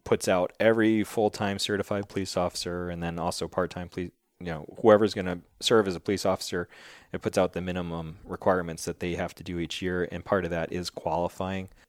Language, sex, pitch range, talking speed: English, male, 85-95 Hz, 205 wpm